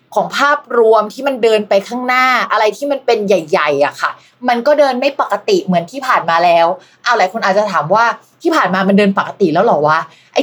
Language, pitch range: Thai, 195-255 Hz